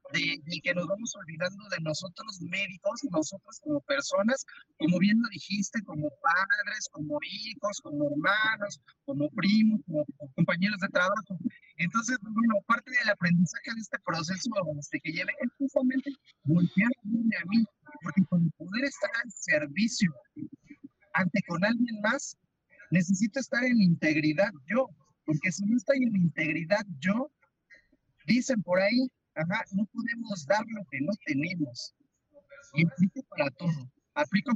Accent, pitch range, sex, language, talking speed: Mexican, 180-250 Hz, male, Spanish, 140 wpm